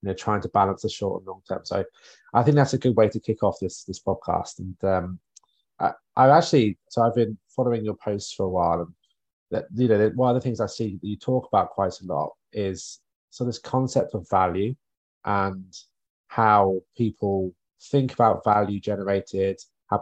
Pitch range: 95-115 Hz